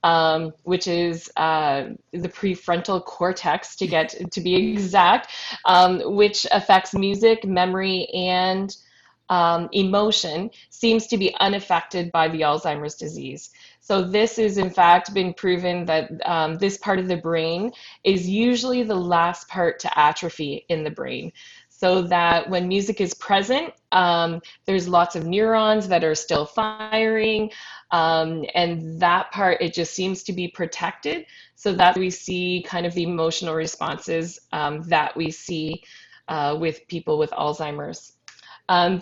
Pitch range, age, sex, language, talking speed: 165-195 Hz, 20-39, female, English, 150 wpm